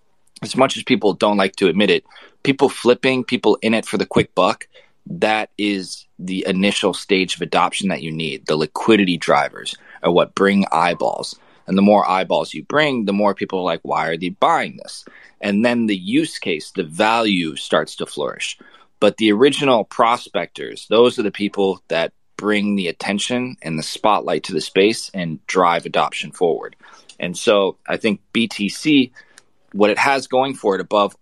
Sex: male